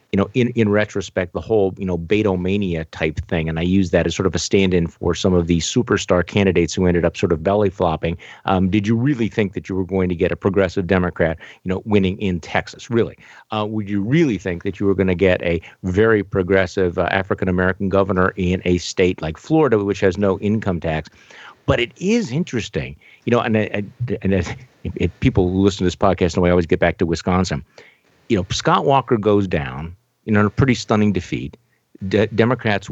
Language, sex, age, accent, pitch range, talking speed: English, male, 50-69, American, 90-110 Hz, 215 wpm